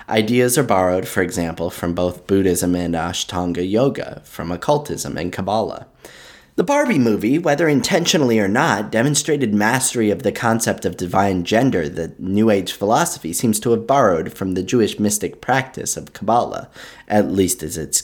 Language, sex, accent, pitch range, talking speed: English, male, American, 90-130 Hz, 165 wpm